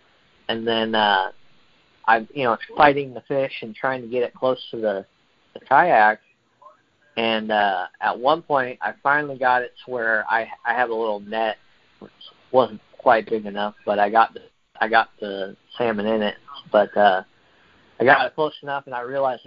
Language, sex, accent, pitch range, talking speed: English, male, American, 110-135 Hz, 190 wpm